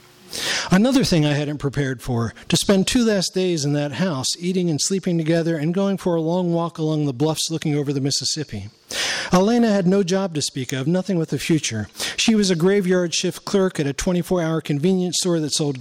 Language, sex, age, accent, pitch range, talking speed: English, male, 50-69, American, 150-185 Hz, 210 wpm